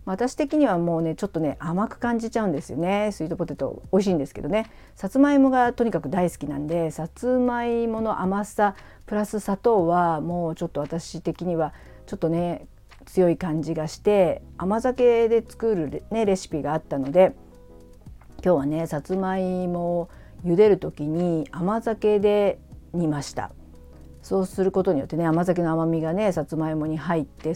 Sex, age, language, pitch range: female, 50-69, Japanese, 150-190 Hz